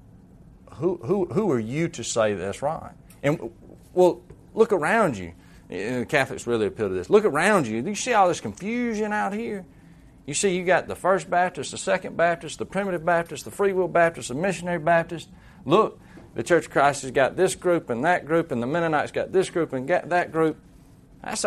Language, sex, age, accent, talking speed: English, male, 40-59, American, 205 wpm